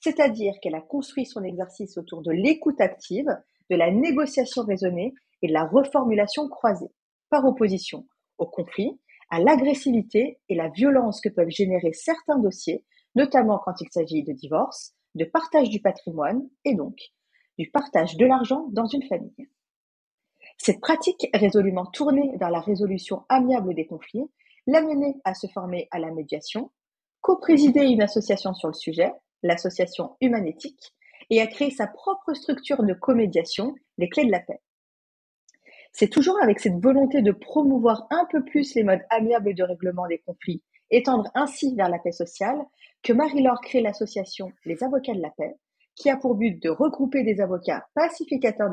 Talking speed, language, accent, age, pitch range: 165 wpm, French, French, 40-59, 185-275 Hz